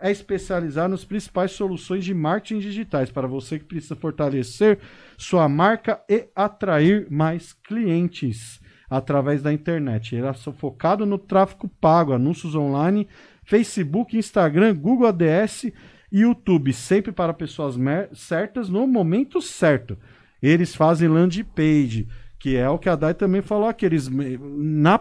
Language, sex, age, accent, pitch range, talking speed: Portuguese, male, 50-69, Brazilian, 135-185 Hz, 140 wpm